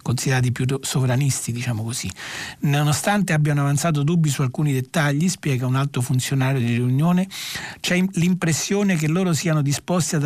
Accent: native